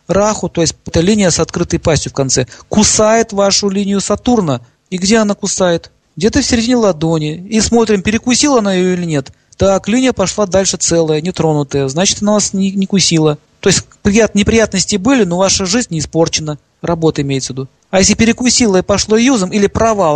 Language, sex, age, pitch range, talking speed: Russian, male, 40-59, 160-215 Hz, 185 wpm